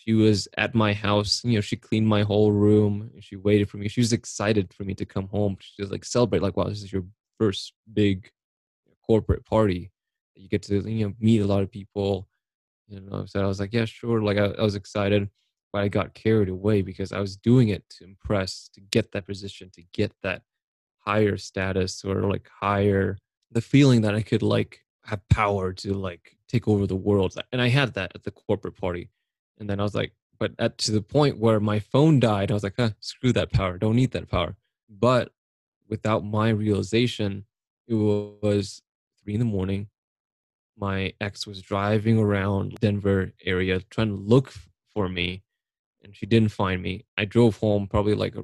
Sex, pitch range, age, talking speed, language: male, 100-110 Hz, 20-39, 205 wpm, English